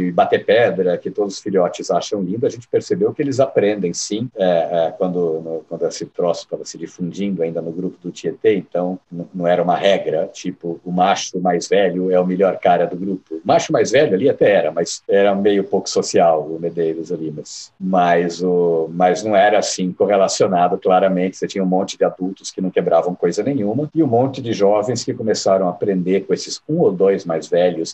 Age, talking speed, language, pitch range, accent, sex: 50-69, 210 wpm, Portuguese, 90-115 Hz, Brazilian, male